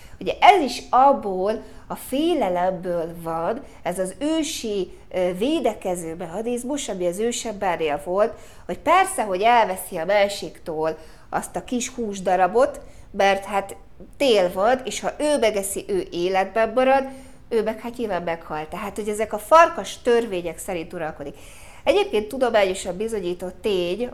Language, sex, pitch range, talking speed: Hungarian, female, 180-235 Hz, 135 wpm